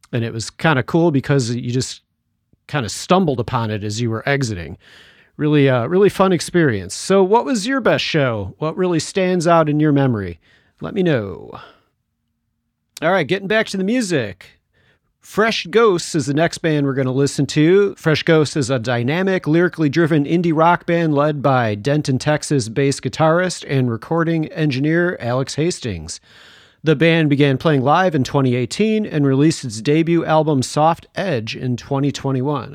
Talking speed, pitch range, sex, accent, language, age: 170 wpm, 130-165 Hz, male, American, English, 40-59